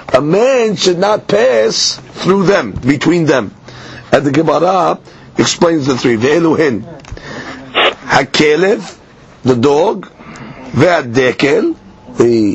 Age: 50-69